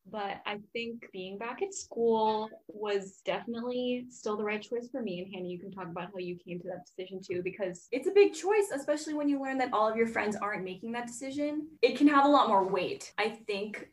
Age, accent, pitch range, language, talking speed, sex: 10-29, American, 195-240 Hz, English, 235 wpm, female